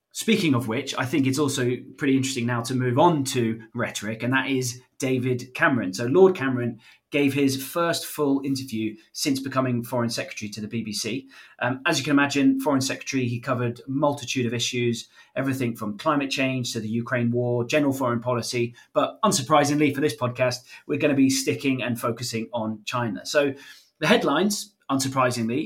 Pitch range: 120-145 Hz